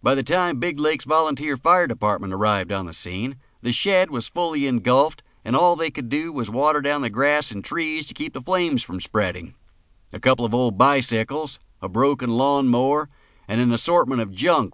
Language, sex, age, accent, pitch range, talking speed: English, male, 50-69, American, 100-145 Hz, 195 wpm